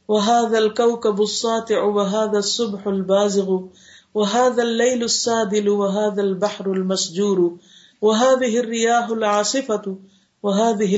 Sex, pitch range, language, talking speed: female, 180-215 Hz, Urdu, 85 wpm